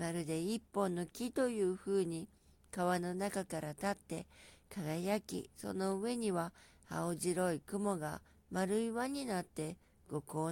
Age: 50-69